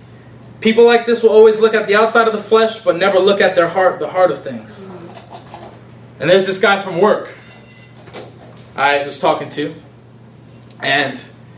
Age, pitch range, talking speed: 20-39, 150-220 Hz, 170 wpm